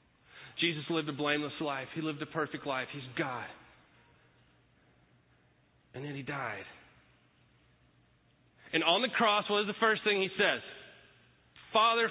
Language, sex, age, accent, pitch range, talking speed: English, male, 30-49, American, 140-215 Hz, 140 wpm